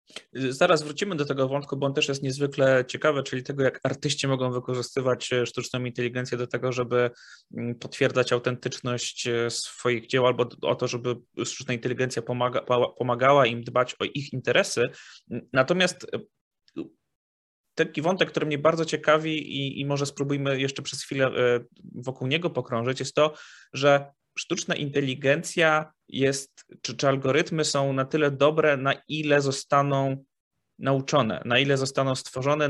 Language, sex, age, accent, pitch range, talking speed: English, male, 20-39, Polish, 125-140 Hz, 140 wpm